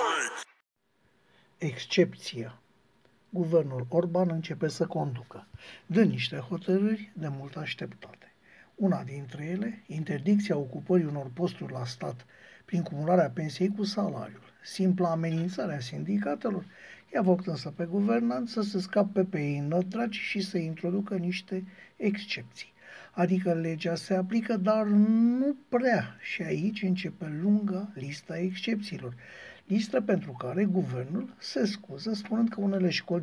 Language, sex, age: Romanian, male, 60-79